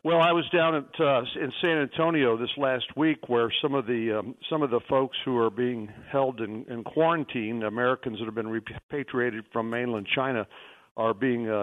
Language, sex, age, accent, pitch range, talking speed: English, male, 60-79, American, 115-140 Hz, 195 wpm